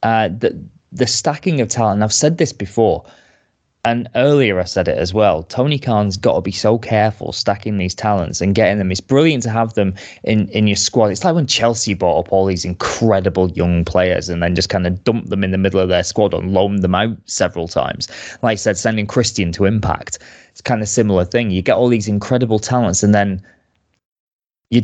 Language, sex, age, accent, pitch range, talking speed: English, male, 20-39, British, 95-120 Hz, 220 wpm